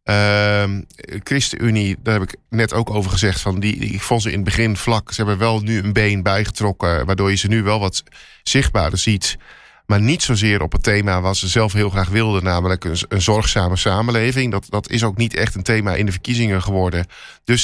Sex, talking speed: male, 220 wpm